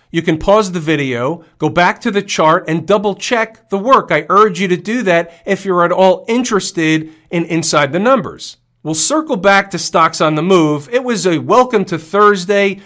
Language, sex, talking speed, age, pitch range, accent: English, male, 200 wpm, 40-59, 160-200 Hz, American